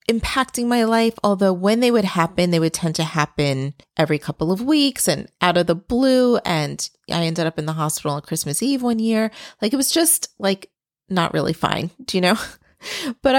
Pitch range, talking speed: 175-235 Hz, 205 wpm